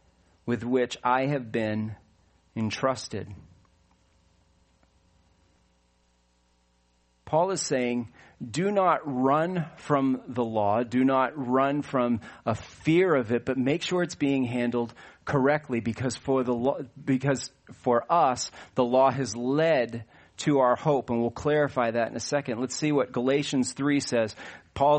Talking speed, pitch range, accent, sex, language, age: 140 wpm, 120-165 Hz, American, male, English, 40-59